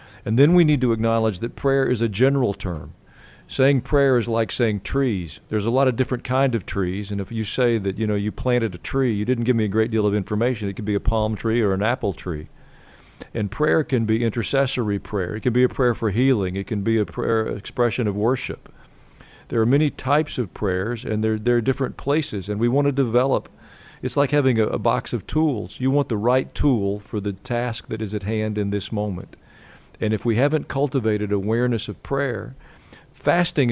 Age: 50-69